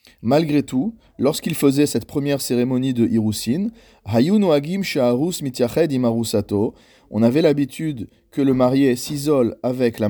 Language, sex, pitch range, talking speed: French, male, 115-145 Hz, 105 wpm